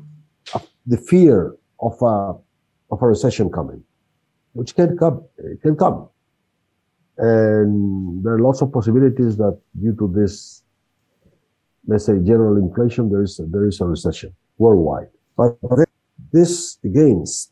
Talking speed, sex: 125 wpm, male